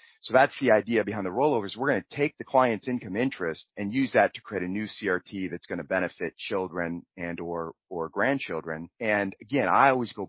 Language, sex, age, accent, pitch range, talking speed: English, male, 40-59, American, 90-115 Hz, 215 wpm